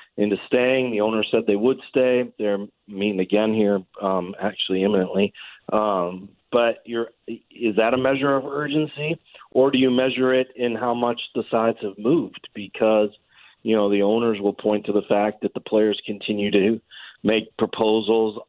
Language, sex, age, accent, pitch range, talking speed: English, male, 40-59, American, 100-115 Hz, 170 wpm